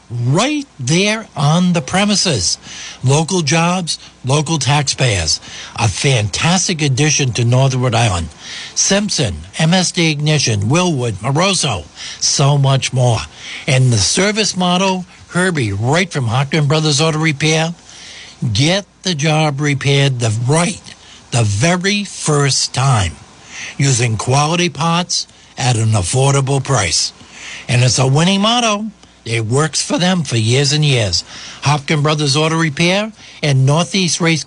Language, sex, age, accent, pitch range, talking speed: English, male, 60-79, American, 130-185 Hz, 125 wpm